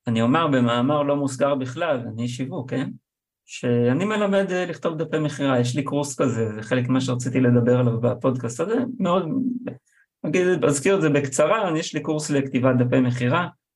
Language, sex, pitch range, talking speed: Hebrew, male, 120-150 Hz, 160 wpm